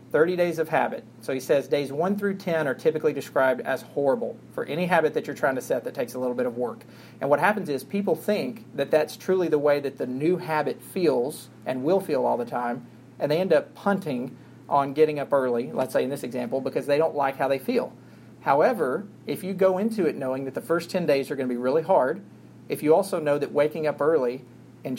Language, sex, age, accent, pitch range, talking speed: English, male, 40-59, American, 130-170 Hz, 245 wpm